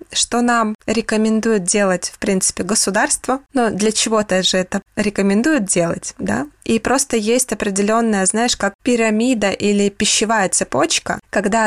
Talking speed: 140 wpm